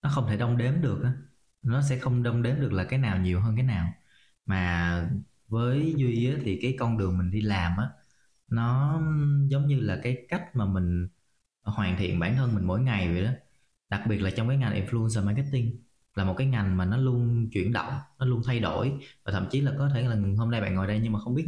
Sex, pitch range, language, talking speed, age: male, 95-125 Hz, Vietnamese, 240 wpm, 20-39